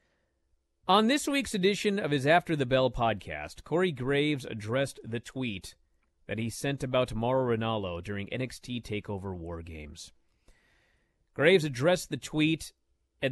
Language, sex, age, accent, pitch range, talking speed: English, male, 40-59, American, 110-175 Hz, 140 wpm